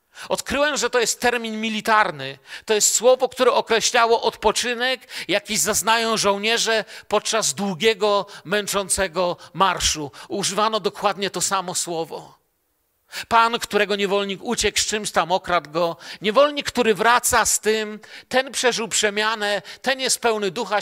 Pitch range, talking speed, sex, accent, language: 170-225 Hz, 130 wpm, male, native, Polish